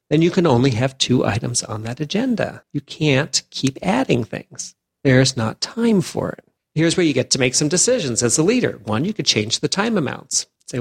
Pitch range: 115-150 Hz